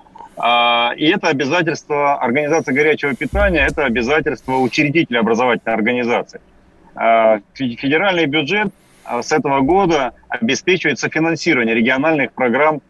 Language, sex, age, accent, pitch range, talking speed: Russian, male, 30-49, native, 120-160 Hz, 95 wpm